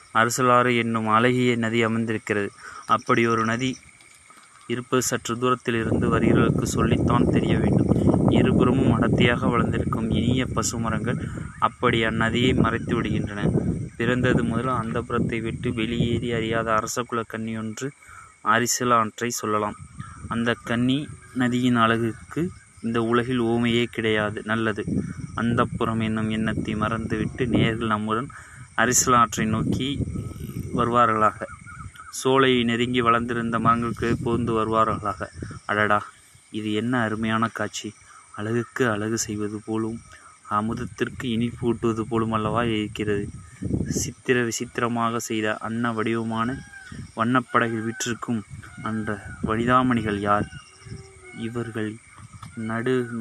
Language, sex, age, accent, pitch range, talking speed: Tamil, male, 20-39, native, 110-120 Hz, 95 wpm